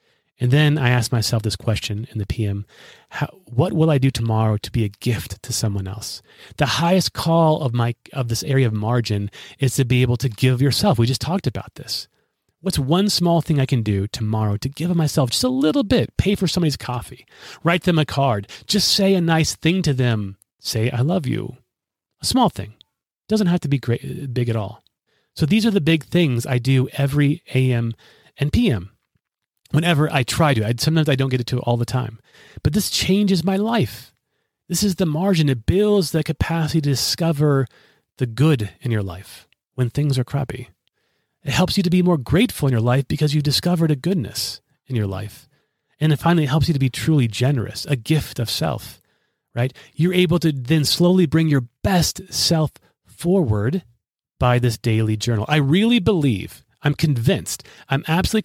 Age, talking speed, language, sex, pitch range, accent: 30-49, 200 wpm, English, male, 120-160 Hz, American